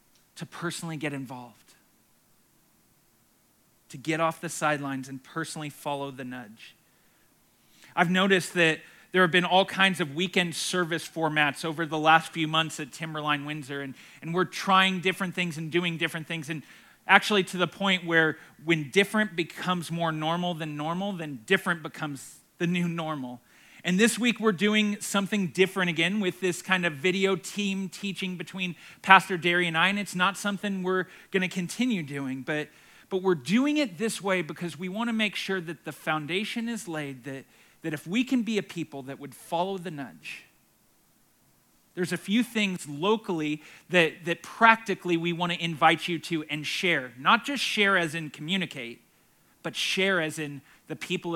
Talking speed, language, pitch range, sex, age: 175 wpm, English, 155-190 Hz, male, 40-59